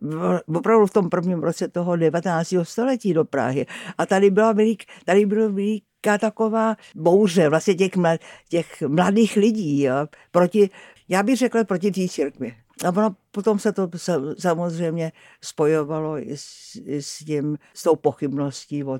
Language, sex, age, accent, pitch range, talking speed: Czech, female, 60-79, native, 155-195 Hz, 155 wpm